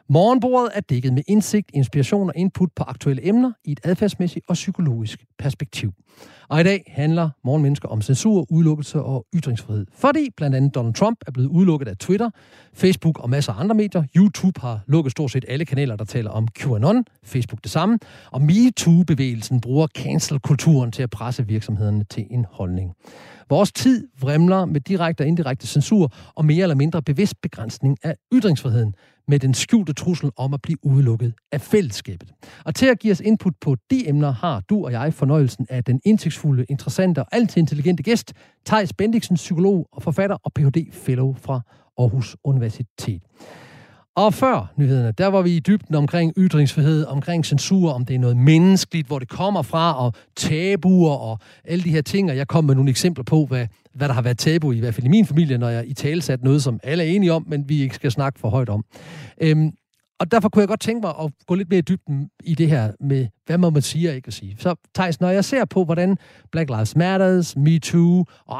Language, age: Danish, 40-59